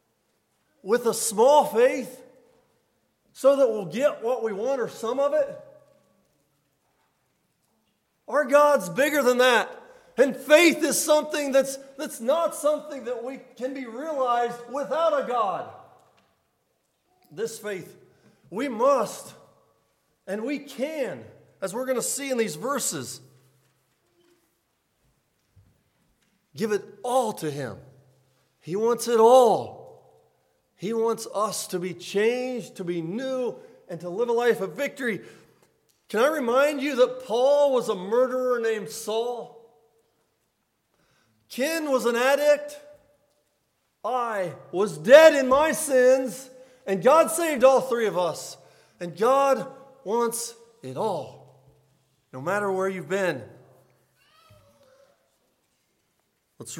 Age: 40-59